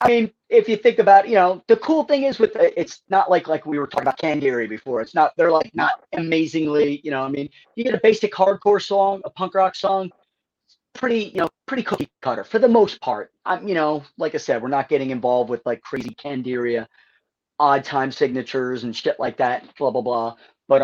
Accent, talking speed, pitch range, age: American, 230 wpm, 140-195 Hz, 30-49